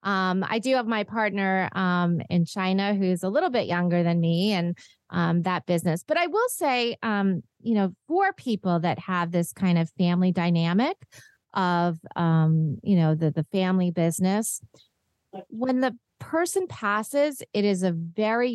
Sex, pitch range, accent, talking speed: female, 170-210 Hz, American, 170 wpm